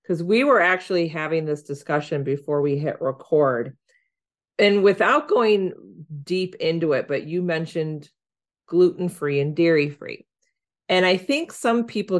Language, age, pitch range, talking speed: English, 40-59, 145-185 Hz, 150 wpm